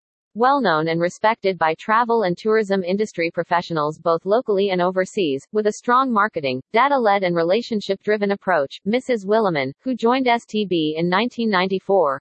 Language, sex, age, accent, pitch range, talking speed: English, female, 40-59, American, 175-225 Hz, 140 wpm